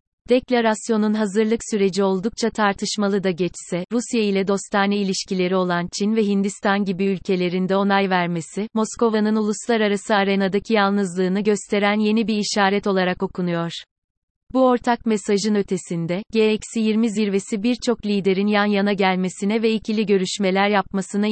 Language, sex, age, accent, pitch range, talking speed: Turkish, female, 30-49, native, 190-220 Hz, 125 wpm